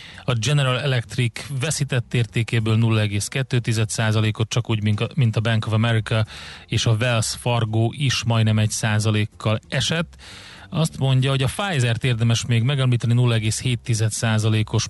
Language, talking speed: Hungarian, 125 wpm